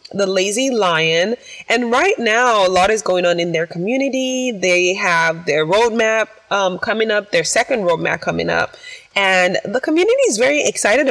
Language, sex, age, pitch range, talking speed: English, female, 20-39, 170-220 Hz, 175 wpm